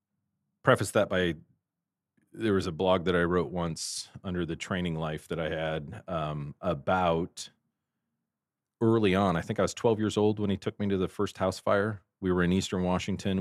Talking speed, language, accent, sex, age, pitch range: 190 wpm, English, American, male, 40-59, 80-95 Hz